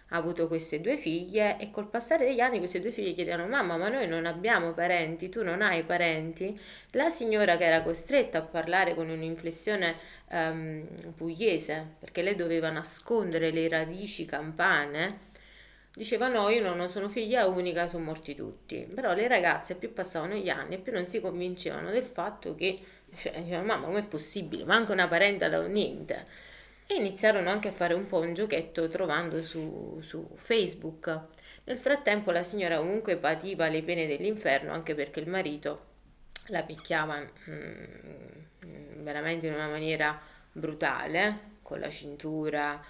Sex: female